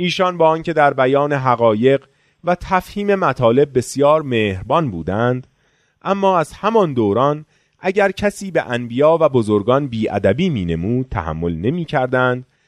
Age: 30-49